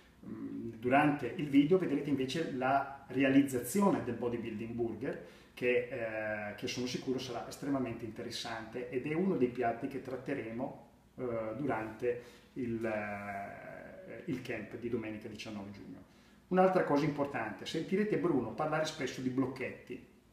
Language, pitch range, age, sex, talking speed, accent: Italian, 115-140 Hz, 30-49, male, 125 wpm, native